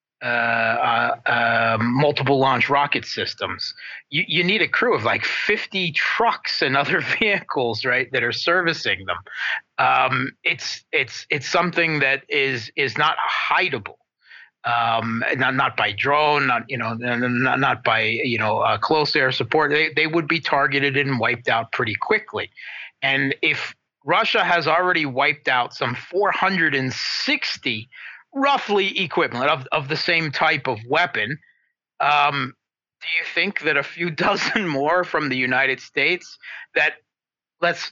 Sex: male